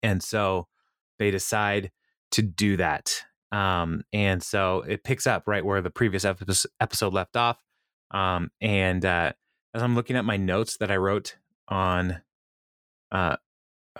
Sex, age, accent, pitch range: male, 20-39, American, 95-115 Hz